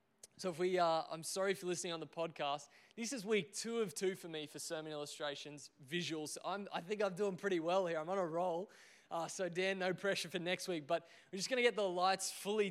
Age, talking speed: 20-39, 245 wpm